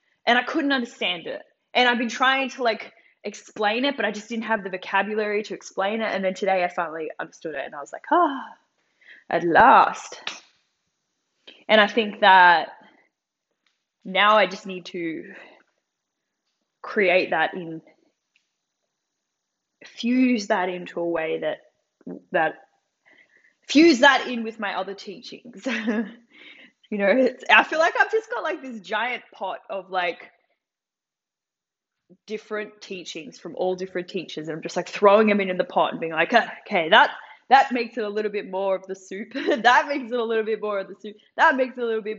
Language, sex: English, female